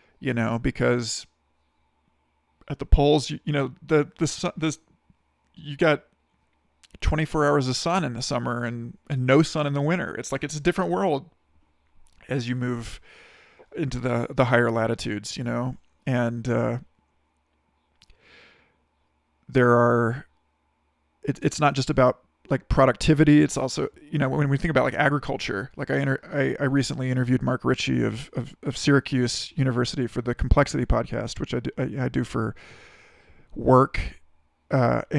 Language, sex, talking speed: English, male, 155 wpm